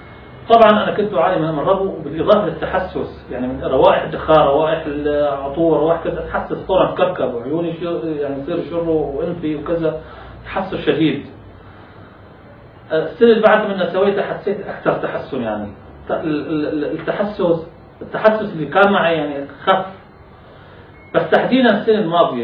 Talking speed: 130 wpm